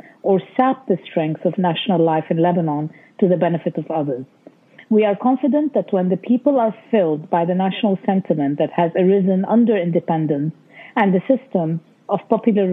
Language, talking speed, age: English, 175 wpm, 50-69